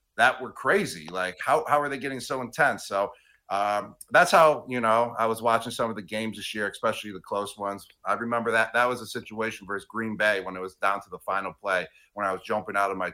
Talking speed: 250 wpm